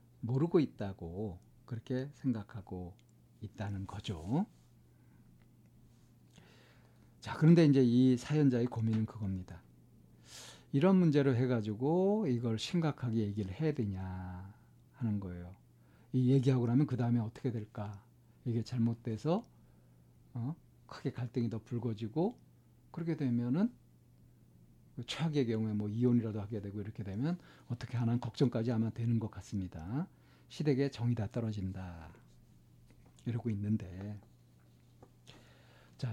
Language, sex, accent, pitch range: Korean, male, native, 105-135 Hz